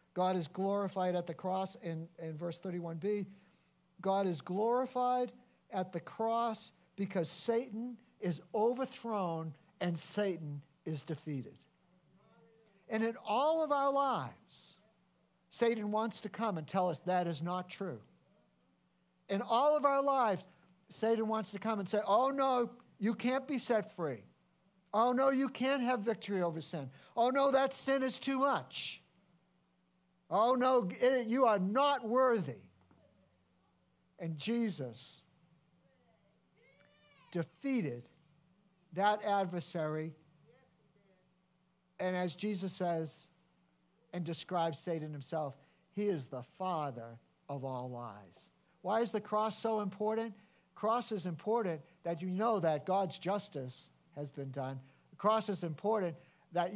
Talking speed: 130 wpm